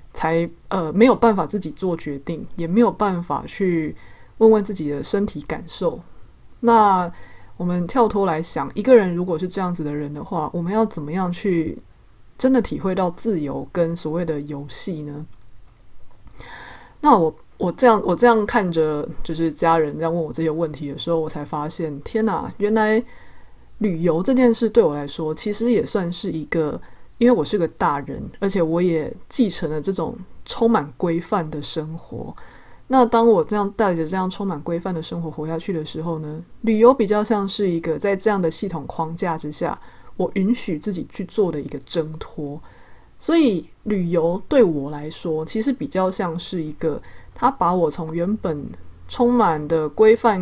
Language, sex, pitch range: Chinese, female, 160-210 Hz